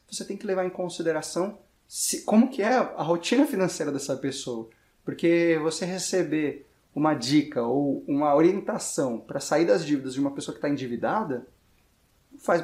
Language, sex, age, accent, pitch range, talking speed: Portuguese, male, 30-49, Brazilian, 135-180 Hz, 160 wpm